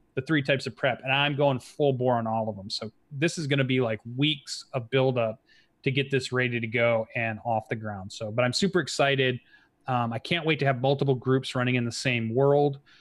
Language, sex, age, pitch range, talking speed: English, male, 30-49, 120-145 Hz, 240 wpm